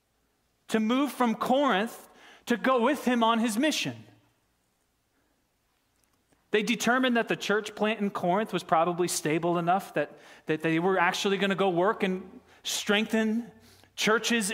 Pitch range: 155-225 Hz